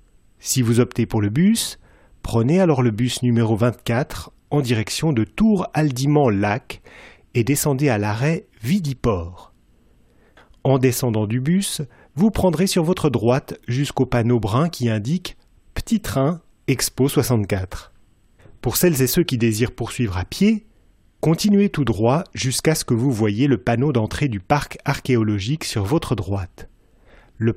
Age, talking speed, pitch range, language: 30-49, 150 wpm, 110-150 Hz, French